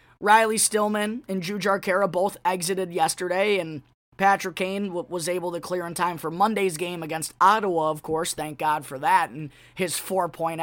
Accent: American